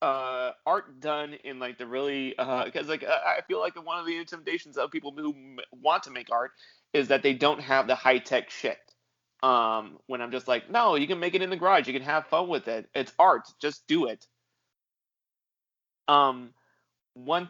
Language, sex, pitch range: English, male, 120-145 Hz